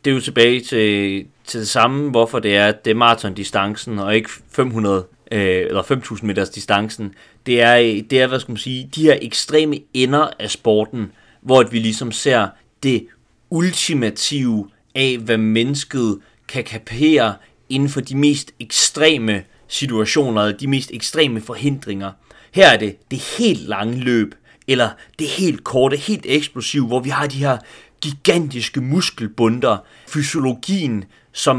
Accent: native